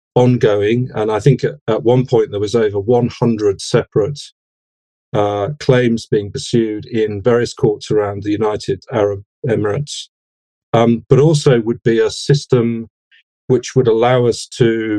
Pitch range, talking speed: 105-125 Hz, 145 wpm